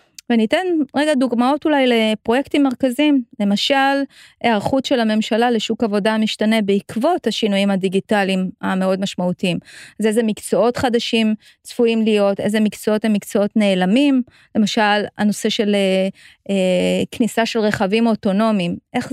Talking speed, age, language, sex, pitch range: 120 wpm, 30-49, Hebrew, female, 210-265 Hz